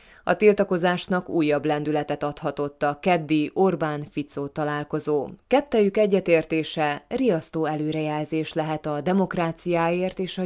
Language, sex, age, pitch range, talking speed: Hungarian, female, 20-39, 150-175 Hz, 105 wpm